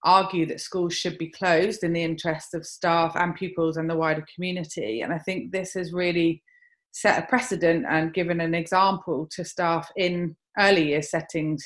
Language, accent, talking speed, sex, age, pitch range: English, British, 185 wpm, female, 20-39, 155-185 Hz